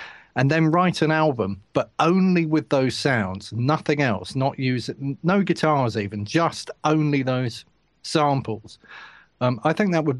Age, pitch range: 40-59, 115-145 Hz